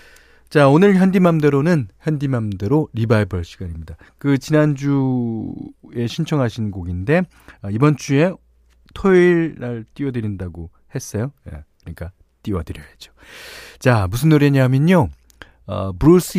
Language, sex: Korean, male